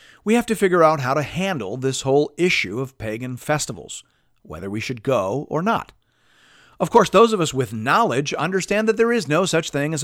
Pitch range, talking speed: 115-180 Hz, 210 wpm